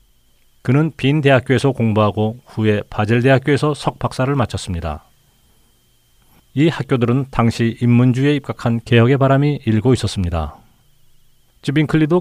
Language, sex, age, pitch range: Korean, male, 40-59, 105-140 Hz